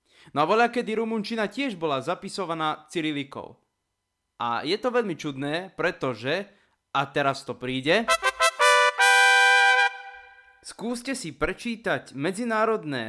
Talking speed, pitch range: 105 wpm, 135-190 Hz